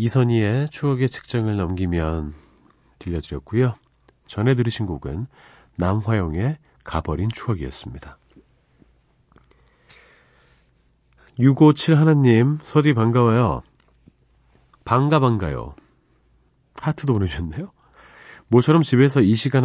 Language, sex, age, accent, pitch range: Korean, male, 40-59, native, 80-120 Hz